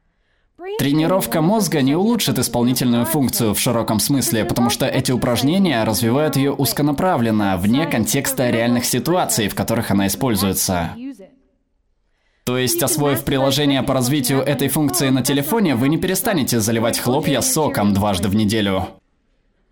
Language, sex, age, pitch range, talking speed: Russian, male, 20-39, 115-160 Hz, 130 wpm